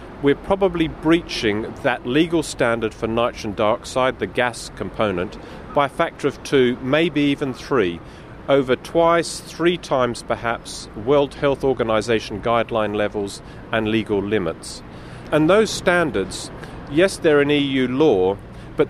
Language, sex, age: English, male, 40-59